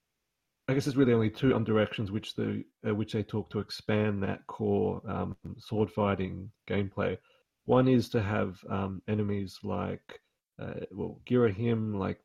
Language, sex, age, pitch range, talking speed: English, male, 30-49, 95-110 Hz, 155 wpm